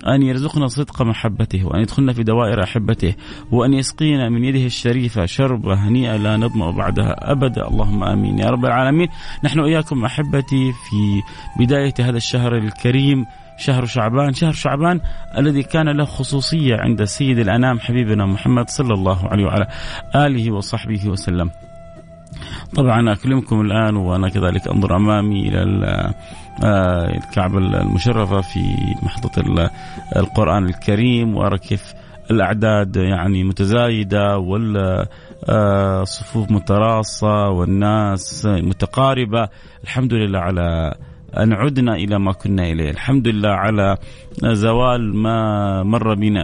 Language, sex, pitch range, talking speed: Arabic, male, 100-125 Hz, 120 wpm